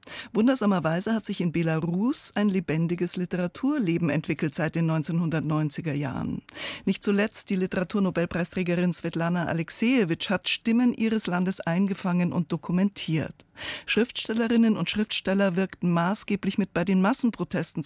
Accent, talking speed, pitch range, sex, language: German, 120 wpm, 170-215 Hz, female, German